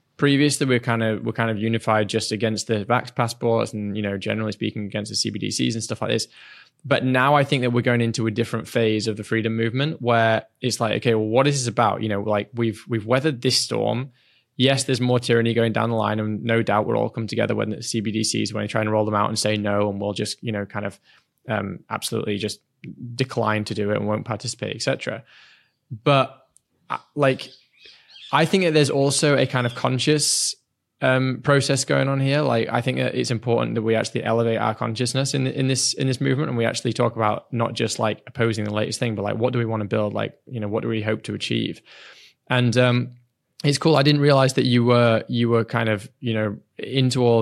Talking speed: 235 wpm